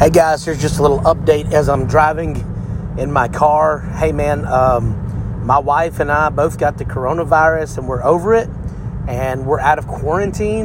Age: 30-49